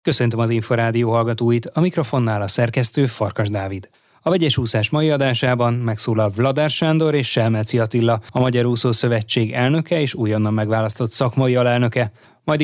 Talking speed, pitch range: 150 wpm, 110-135 Hz